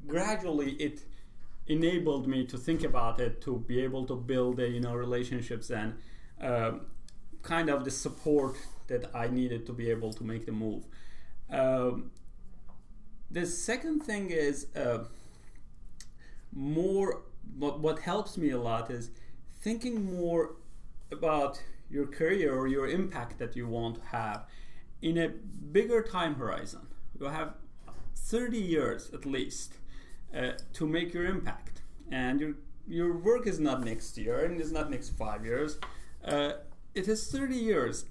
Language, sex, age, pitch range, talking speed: English, male, 40-59, 120-165 Hz, 150 wpm